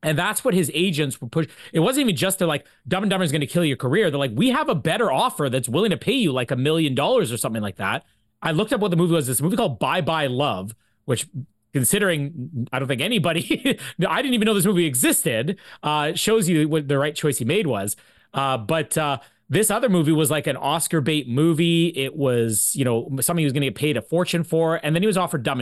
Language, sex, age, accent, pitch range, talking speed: English, male, 30-49, American, 135-175 Hz, 255 wpm